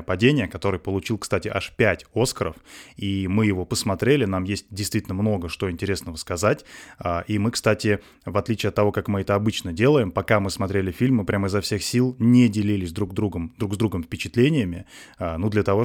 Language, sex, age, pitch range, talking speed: Russian, male, 20-39, 100-120 Hz, 190 wpm